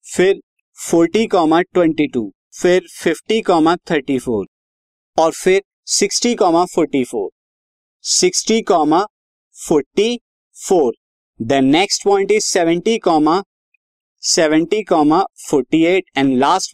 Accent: native